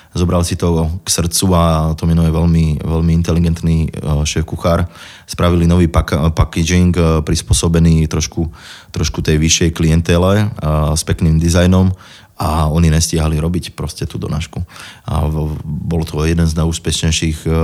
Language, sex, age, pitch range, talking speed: Slovak, male, 20-39, 80-85 Hz, 135 wpm